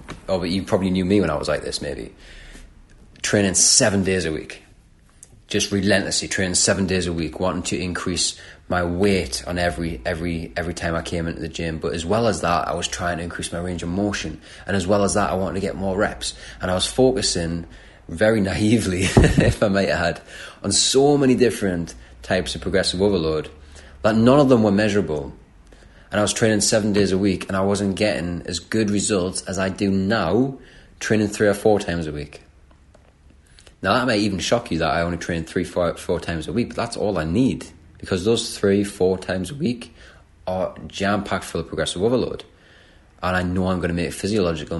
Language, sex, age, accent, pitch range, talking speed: English, male, 20-39, British, 85-100 Hz, 210 wpm